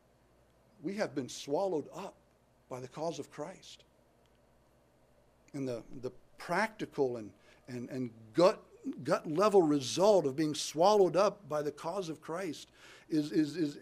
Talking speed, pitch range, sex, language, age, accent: 150 wpm, 120-185 Hz, male, English, 60-79, American